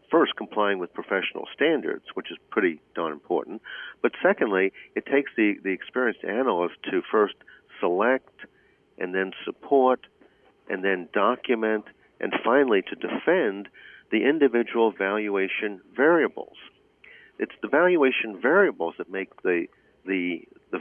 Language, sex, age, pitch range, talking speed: English, male, 50-69, 95-125 Hz, 125 wpm